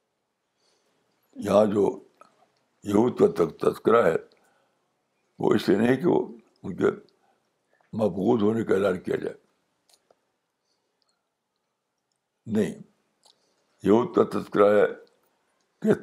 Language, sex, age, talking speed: Urdu, male, 60-79, 90 wpm